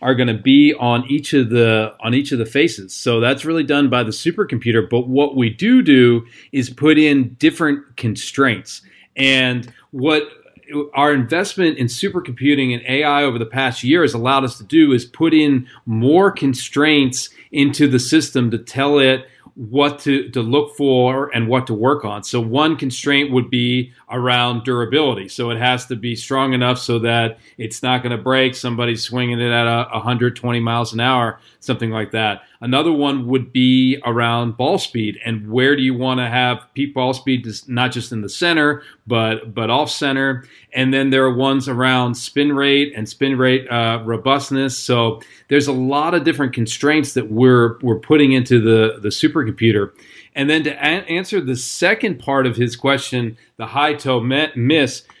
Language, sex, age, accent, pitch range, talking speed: English, male, 40-59, American, 120-140 Hz, 180 wpm